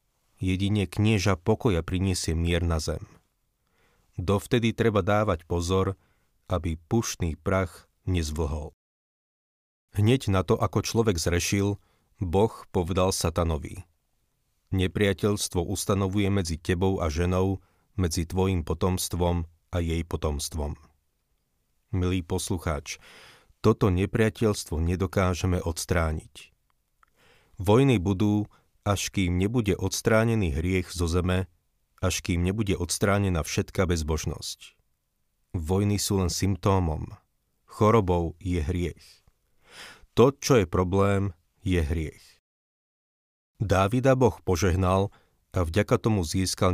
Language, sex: Slovak, male